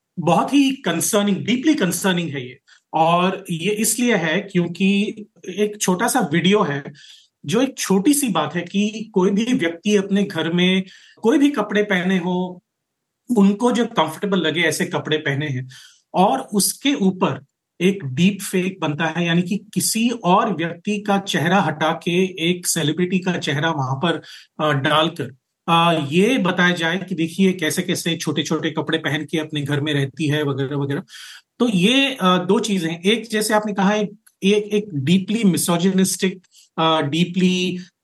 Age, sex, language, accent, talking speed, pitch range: 40-59, male, Hindi, native, 160 wpm, 160-205 Hz